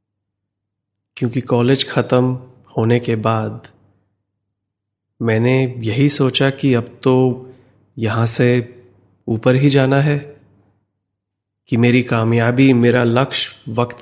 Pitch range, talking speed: 105-125 Hz, 105 wpm